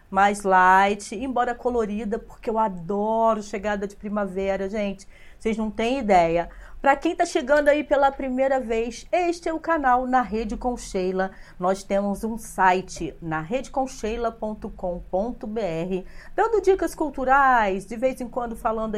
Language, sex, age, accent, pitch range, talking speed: Portuguese, female, 40-59, Brazilian, 205-265 Hz, 140 wpm